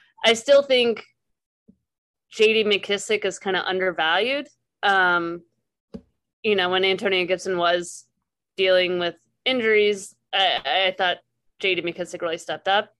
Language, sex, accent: English, female, American